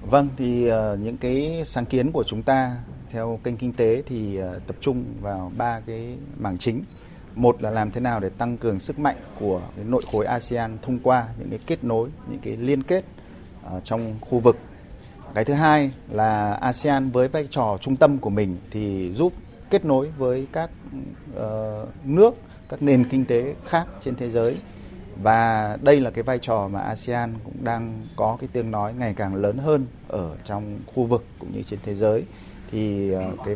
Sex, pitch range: male, 100-130 Hz